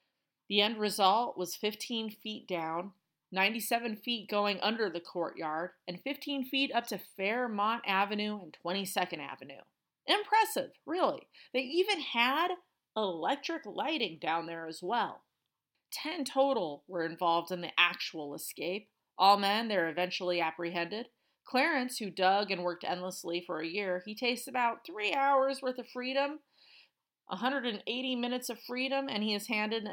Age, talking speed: 30-49, 145 wpm